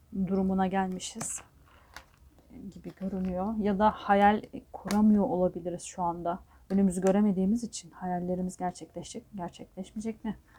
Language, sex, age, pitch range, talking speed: Turkish, female, 40-59, 185-235 Hz, 100 wpm